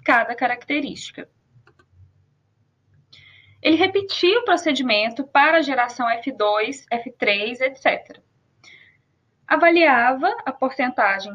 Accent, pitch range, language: Brazilian, 215-305 Hz, Portuguese